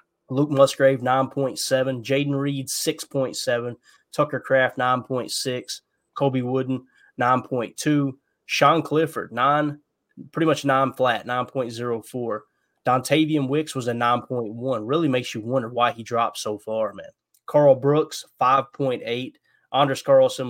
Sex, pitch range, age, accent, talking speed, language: male, 120-140 Hz, 20-39, American, 115 wpm, English